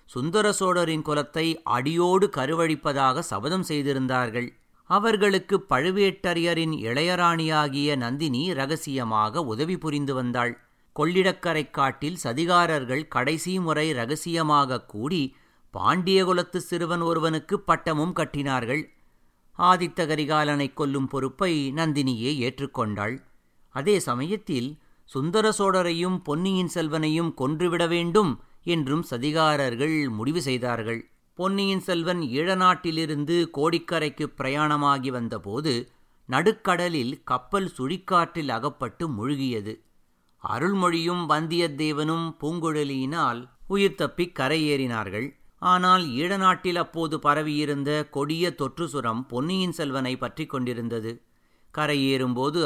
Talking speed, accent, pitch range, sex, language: 85 wpm, native, 130-175 Hz, male, Tamil